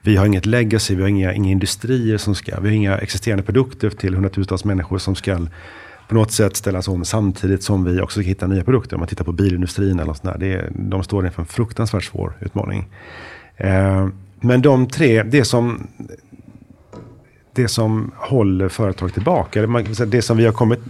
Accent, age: native, 40-59